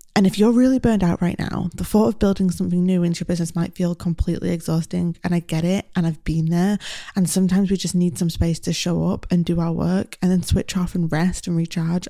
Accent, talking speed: British, 255 wpm